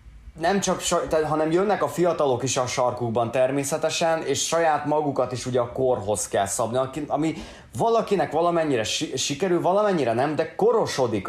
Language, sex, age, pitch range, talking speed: Hungarian, male, 30-49, 105-160 Hz, 150 wpm